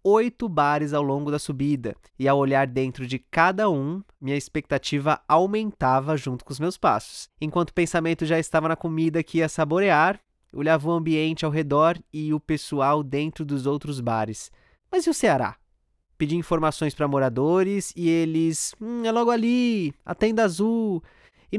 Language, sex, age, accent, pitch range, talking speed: Portuguese, male, 20-39, Brazilian, 150-210 Hz, 170 wpm